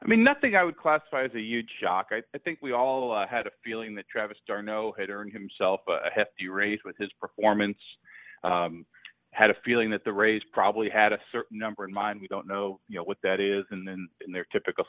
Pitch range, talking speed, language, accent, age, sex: 105-140 Hz, 240 wpm, English, American, 40-59, male